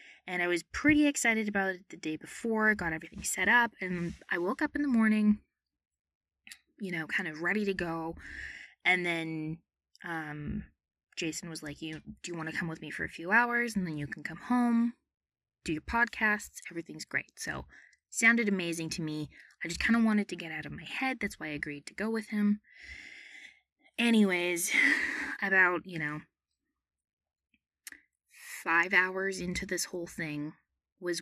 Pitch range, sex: 160-220 Hz, female